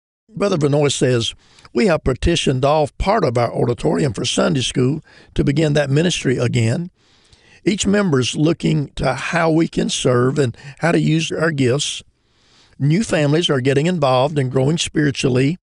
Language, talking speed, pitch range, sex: English, 160 wpm, 125-160 Hz, male